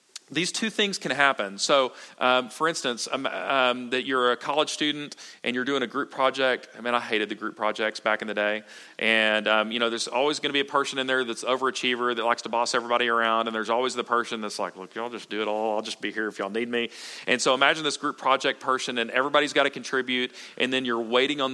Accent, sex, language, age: American, male, English, 40-59